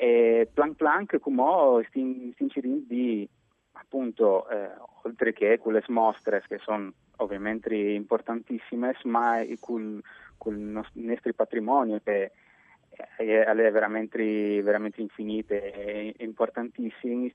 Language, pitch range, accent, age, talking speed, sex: Italian, 105-120 Hz, native, 20-39, 100 wpm, male